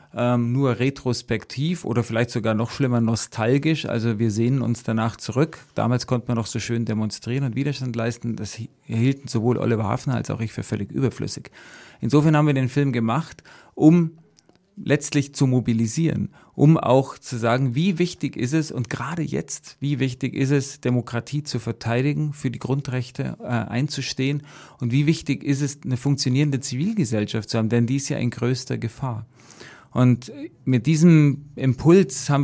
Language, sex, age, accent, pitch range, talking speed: German, male, 40-59, German, 115-140 Hz, 165 wpm